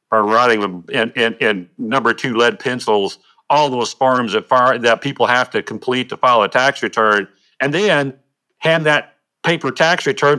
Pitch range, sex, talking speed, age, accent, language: 105-145 Hz, male, 185 wpm, 60-79, American, English